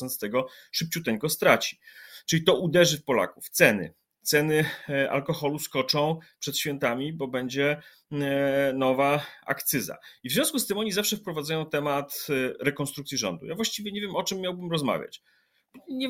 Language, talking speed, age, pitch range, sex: Polish, 145 wpm, 30-49, 135-195 Hz, male